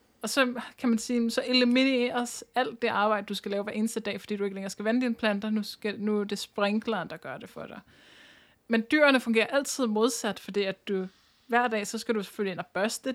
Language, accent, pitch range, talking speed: Danish, native, 205-245 Hz, 235 wpm